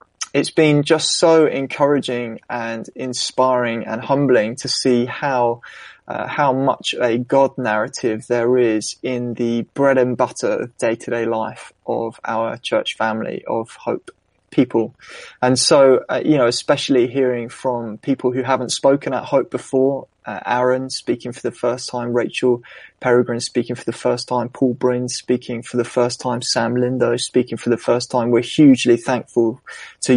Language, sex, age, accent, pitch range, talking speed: English, male, 20-39, British, 120-130 Hz, 160 wpm